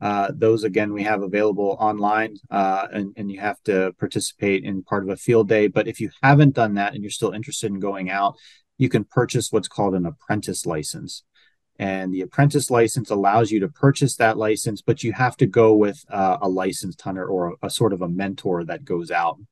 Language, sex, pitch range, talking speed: Arabic, male, 95-120 Hz, 220 wpm